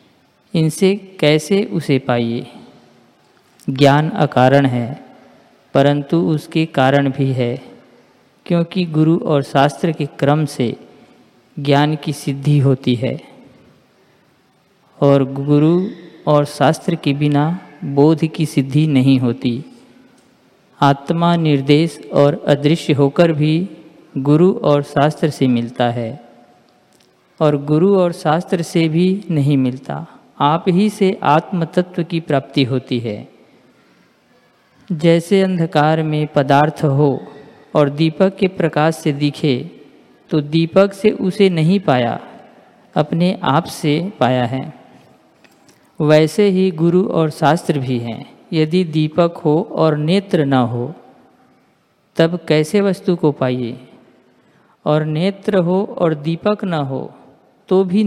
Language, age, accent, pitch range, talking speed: Hindi, 50-69, native, 140-170 Hz, 115 wpm